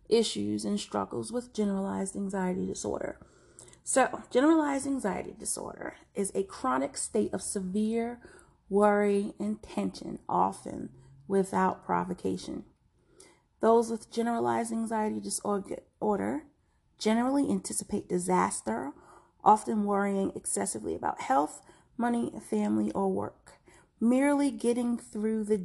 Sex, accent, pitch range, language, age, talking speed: female, American, 185-230 Hz, English, 30-49, 105 wpm